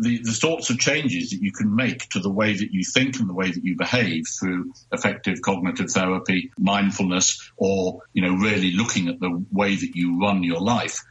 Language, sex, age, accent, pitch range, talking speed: English, male, 60-79, British, 95-125 Hz, 210 wpm